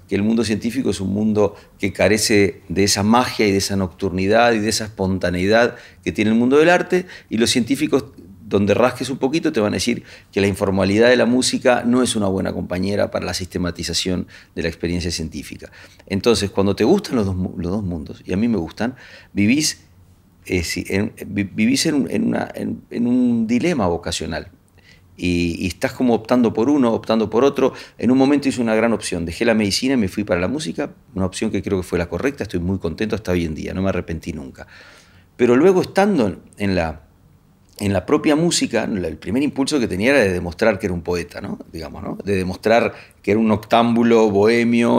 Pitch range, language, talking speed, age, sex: 90-120 Hz, Spanish, 205 wpm, 40-59, male